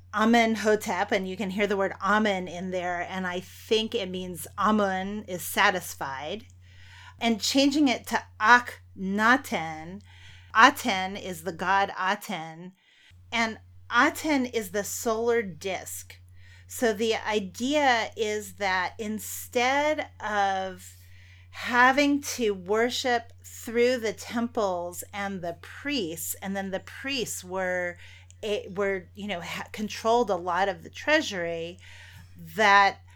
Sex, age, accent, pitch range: female, 30-49, American, 175-225 Hz